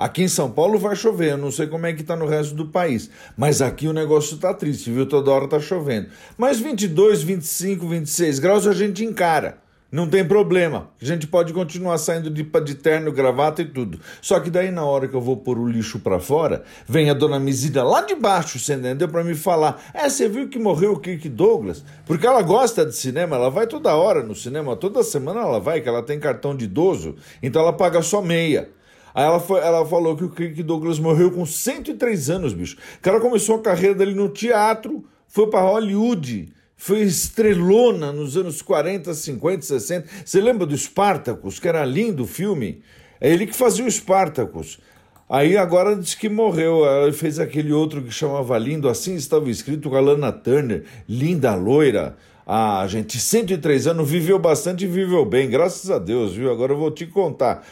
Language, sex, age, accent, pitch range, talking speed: Portuguese, male, 50-69, Brazilian, 145-195 Hz, 200 wpm